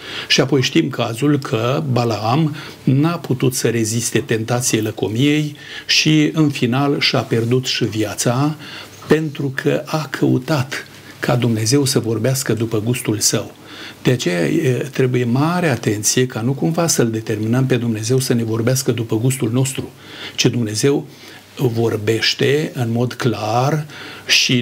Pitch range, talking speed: 115-145 Hz, 135 wpm